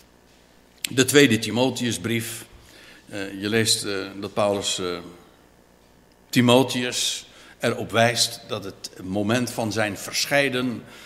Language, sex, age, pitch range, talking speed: Dutch, male, 60-79, 90-130 Hz, 85 wpm